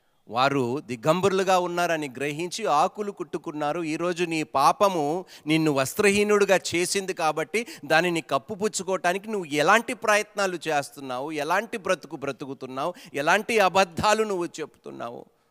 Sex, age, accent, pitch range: male, 40-59, native, 135-175 Hz